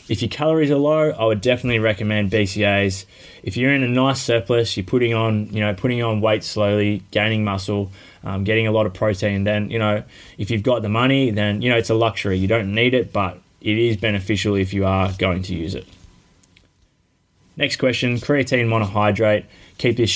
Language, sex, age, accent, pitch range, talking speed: English, male, 20-39, Australian, 100-120 Hz, 200 wpm